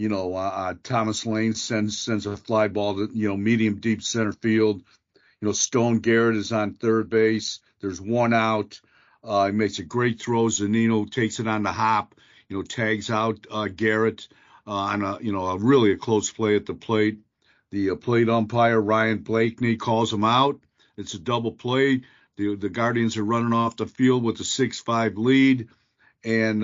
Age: 50-69